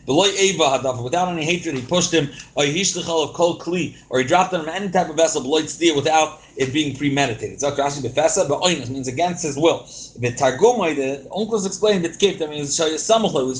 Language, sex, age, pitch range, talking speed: English, male, 30-49, 140-185 Hz, 130 wpm